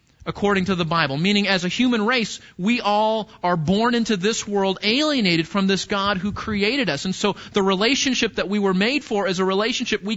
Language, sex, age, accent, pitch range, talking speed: English, male, 40-59, American, 195-245 Hz, 210 wpm